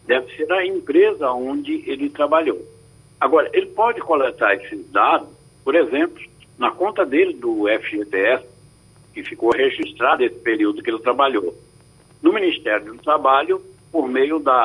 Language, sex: Portuguese, male